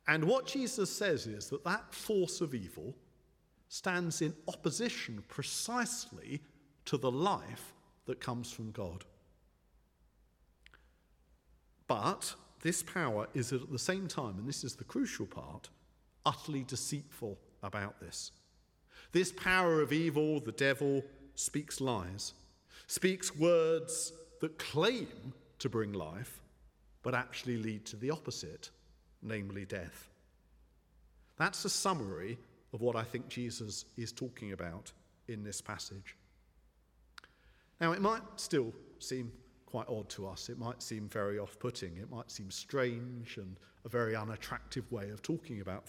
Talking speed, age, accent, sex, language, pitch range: 135 wpm, 50-69, British, male, English, 100-150 Hz